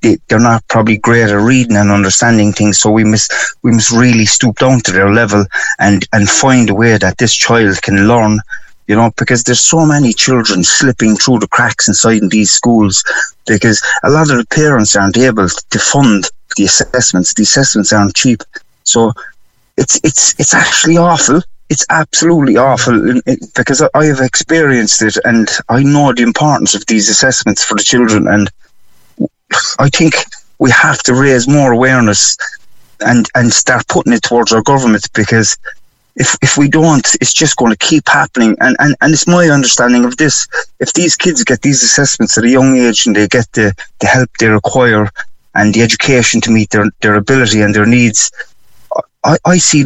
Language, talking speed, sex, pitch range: English, 185 wpm, male, 105-130 Hz